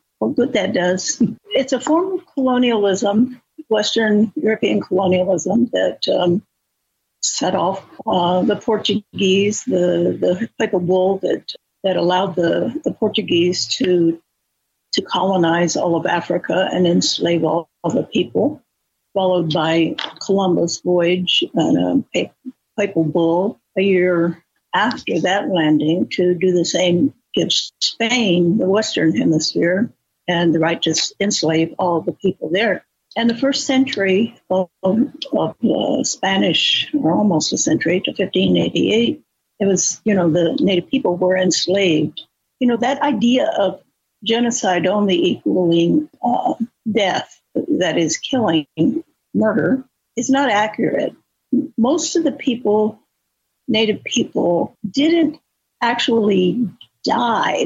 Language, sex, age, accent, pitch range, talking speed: English, female, 60-79, American, 175-240 Hz, 130 wpm